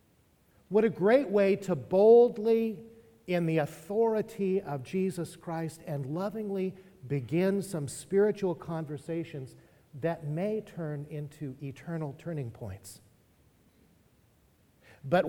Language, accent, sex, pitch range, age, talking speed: English, American, male, 145-200 Hz, 50-69, 100 wpm